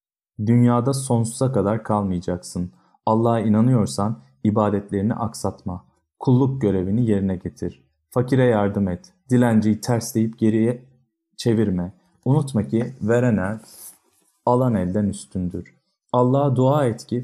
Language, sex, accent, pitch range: Turkish, male, native, 100-125 Hz